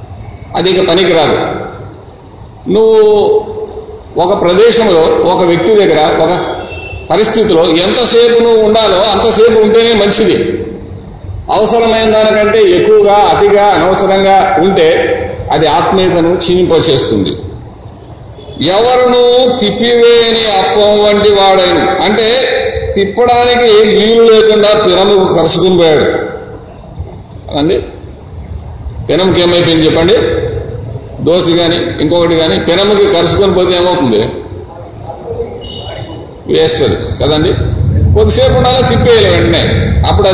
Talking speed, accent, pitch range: 85 wpm, native, 180-250 Hz